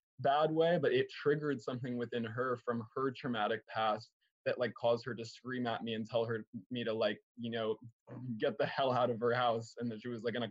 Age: 20-39